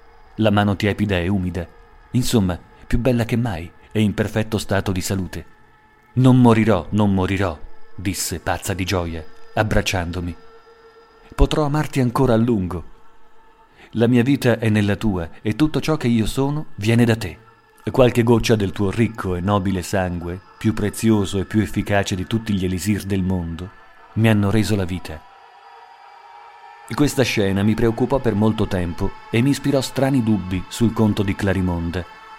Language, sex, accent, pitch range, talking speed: Italian, male, native, 95-120 Hz, 155 wpm